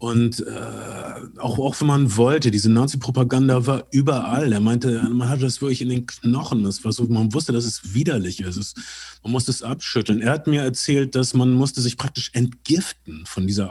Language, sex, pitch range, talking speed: German, male, 110-130 Hz, 200 wpm